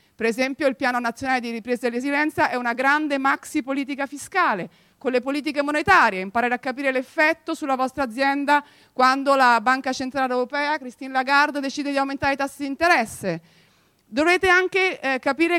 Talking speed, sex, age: 170 wpm, female, 40-59